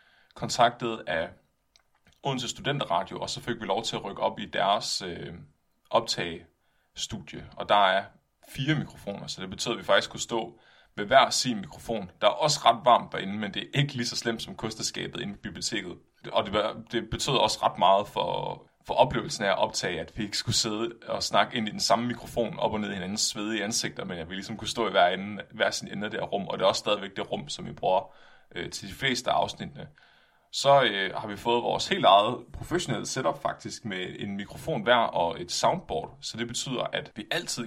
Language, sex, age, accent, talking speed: Danish, male, 20-39, native, 220 wpm